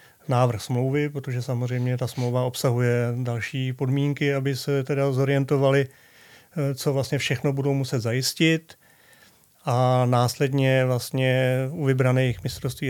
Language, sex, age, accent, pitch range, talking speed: Czech, male, 30-49, native, 125-140 Hz, 115 wpm